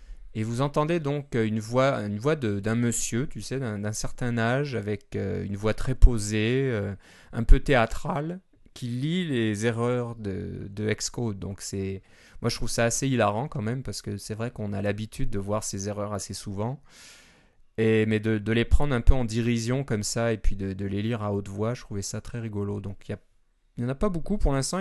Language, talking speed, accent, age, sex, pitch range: French, 225 wpm, French, 20-39, male, 105-125 Hz